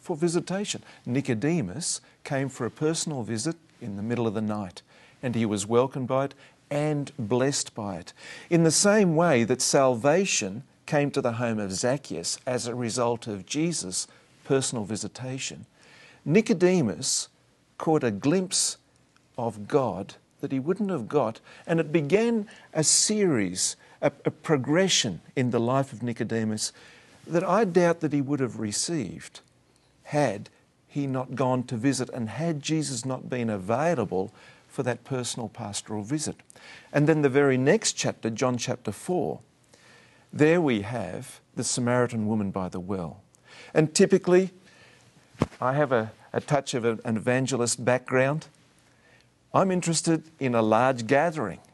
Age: 50-69